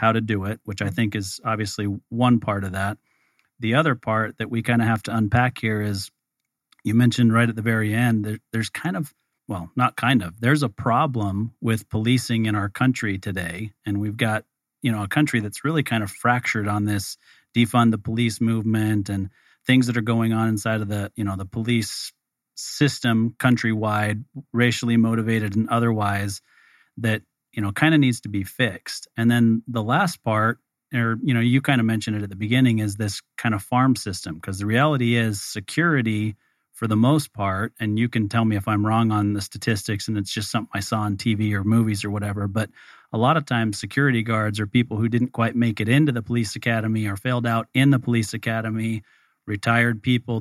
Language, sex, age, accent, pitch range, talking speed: English, male, 40-59, American, 105-120 Hz, 210 wpm